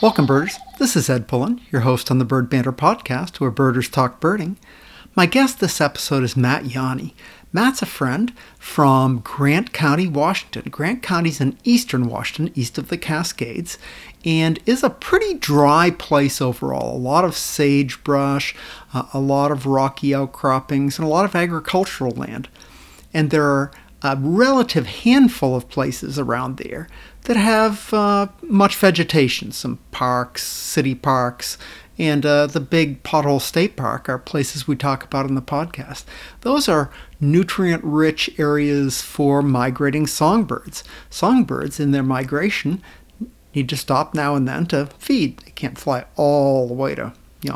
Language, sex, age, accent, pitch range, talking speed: English, male, 50-69, American, 135-175 Hz, 155 wpm